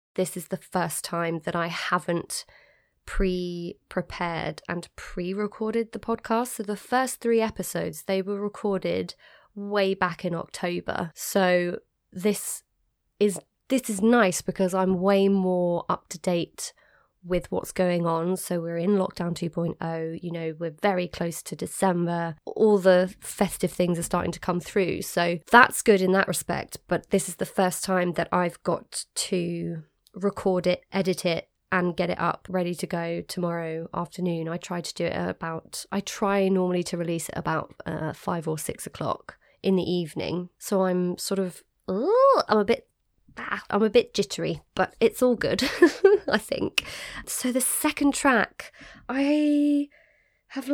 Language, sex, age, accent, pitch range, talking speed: English, female, 20-39, British, 175-210 Hz, 165 wpm